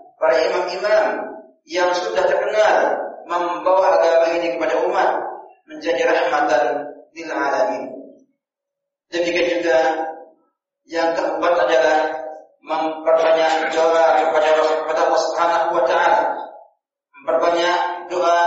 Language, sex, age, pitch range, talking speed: Indonesian, male, 40-59, 160-215 Hz, 90 wpm